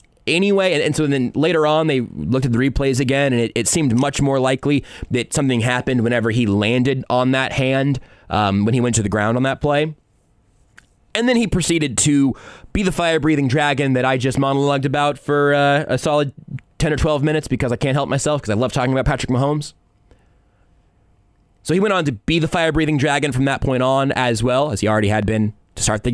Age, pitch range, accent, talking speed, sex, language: 20-39, 115-155 Hz, American, 220 wpm, male, English